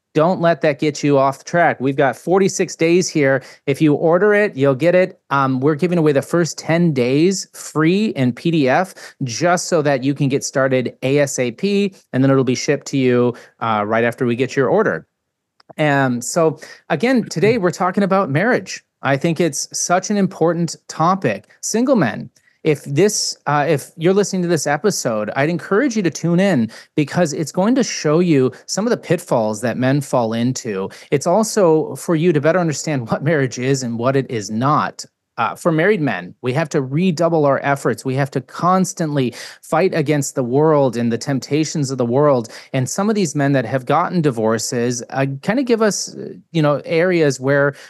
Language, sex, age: English, male, 30-49